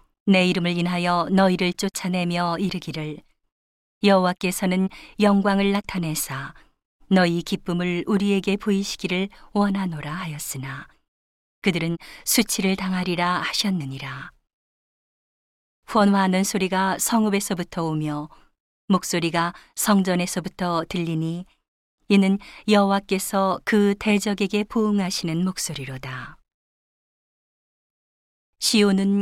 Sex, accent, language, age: female, native, Korean, 40-59